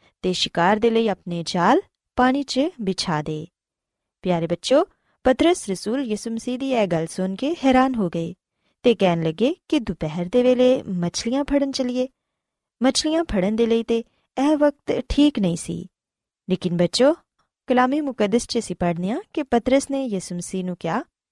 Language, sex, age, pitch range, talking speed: Punjabi, female, 20-39, 180-270 Hz, 145 wpm